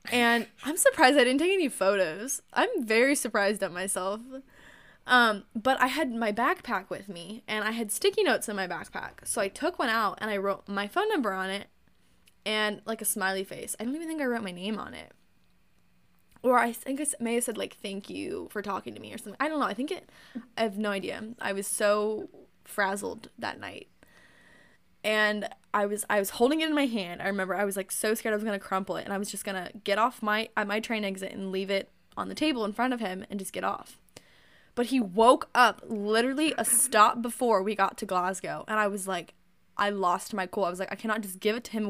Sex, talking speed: female, 245 wpm